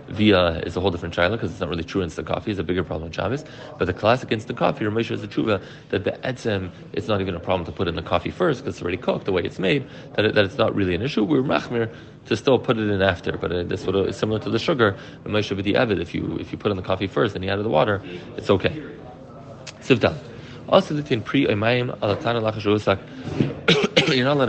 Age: 30-49